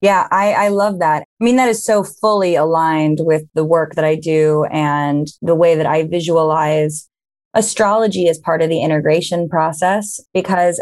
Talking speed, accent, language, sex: 175 wpm, American, English, female